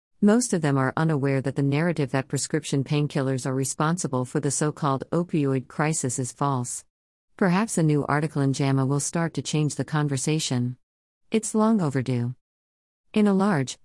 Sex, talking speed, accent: female, 165 wpm, American